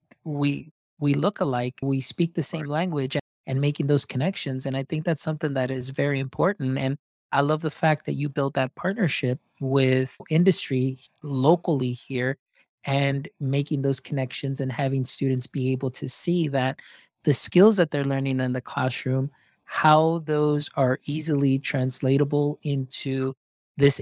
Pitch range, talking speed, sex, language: 135-160 Hz, 155 wpm, male, English